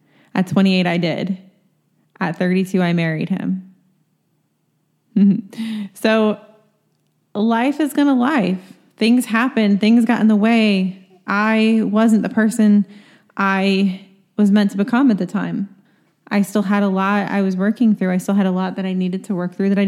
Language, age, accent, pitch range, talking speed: English, 20-39, American, 185-215 Hz, 165 wpm